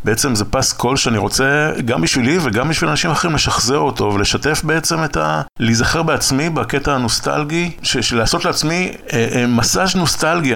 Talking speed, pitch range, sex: 165 wpm, 95-125 Hz, male